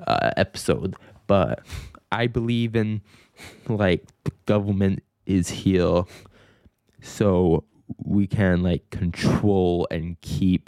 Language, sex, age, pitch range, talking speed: English, male, 20-39, 90-105 Hz, 100 wpm